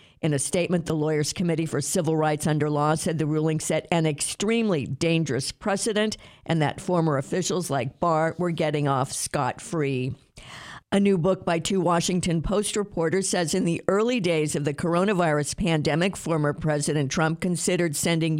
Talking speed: 165 wpm